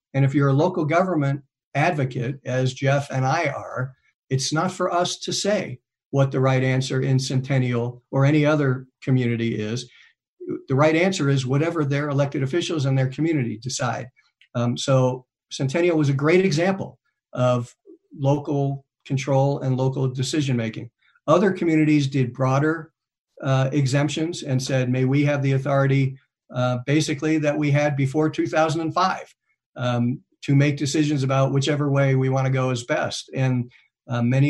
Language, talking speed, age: English, 160 wpm, 50-69